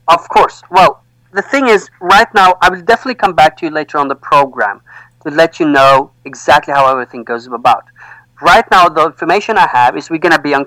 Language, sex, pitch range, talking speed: English, male, 135-180 Hz, 225 wpm